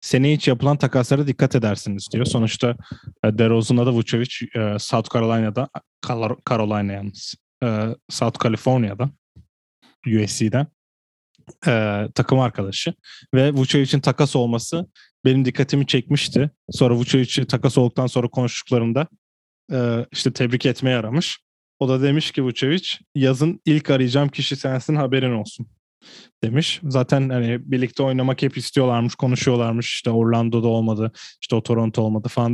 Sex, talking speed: male, 120 wpm